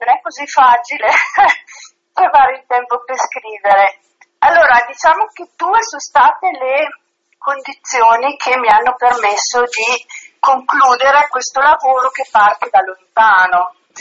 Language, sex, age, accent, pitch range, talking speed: Italian, female, 40-59, native, 220-280 Hz, 125 wpm